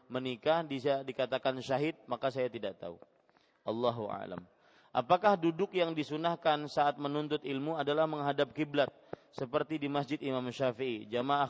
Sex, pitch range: male, 130-150 Hz